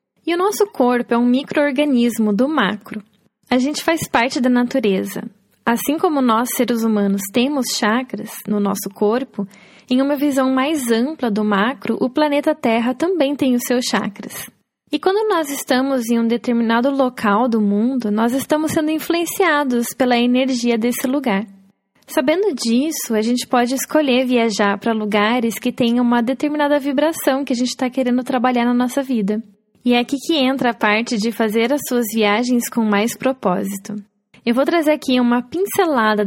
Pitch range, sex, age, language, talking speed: 220-280 Hz, female, 10-29, English, 170 wpm